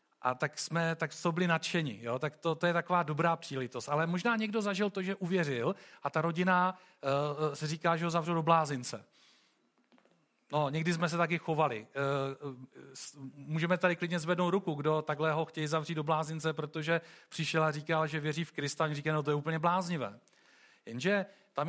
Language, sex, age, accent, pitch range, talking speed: Czech, male, 40-59, native, 145-180 Hz, 185 wpm